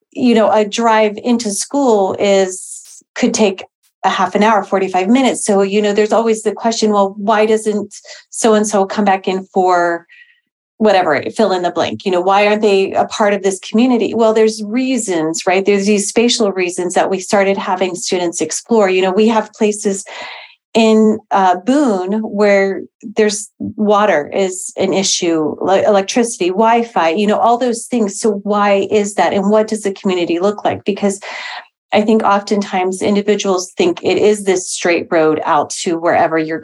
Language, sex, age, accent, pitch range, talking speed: English, female, 40-59, American, 185-220 Hz, 175 wpm